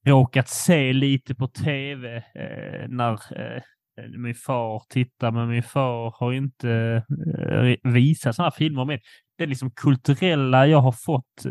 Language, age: Swedish, 20-39